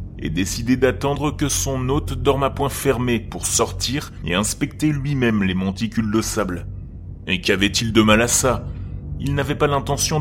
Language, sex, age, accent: French, male, 30-49, French